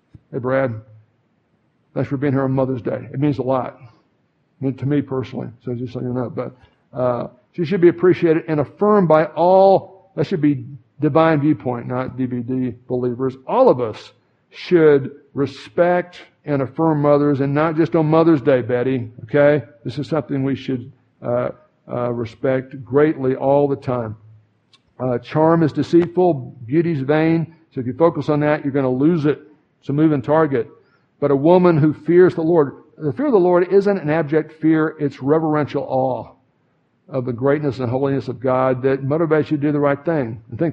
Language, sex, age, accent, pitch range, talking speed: English, male, 60-79, American, 125-155 Hz, 185 wpm